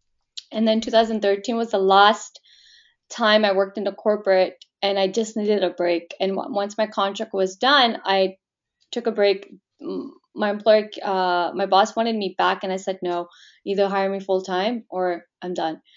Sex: female